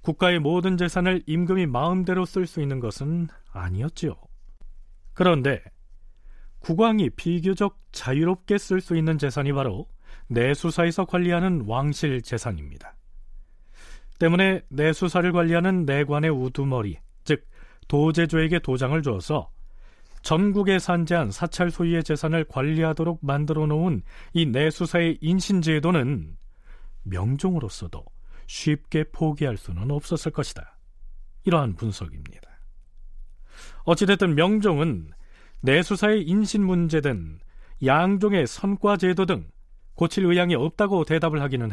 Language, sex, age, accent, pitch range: Korean, male, 40-59, native, 115-175 Hz